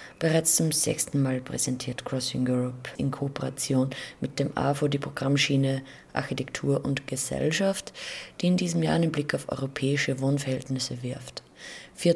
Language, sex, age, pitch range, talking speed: German, female, 20-39, 135-150 Hz, 140 wpm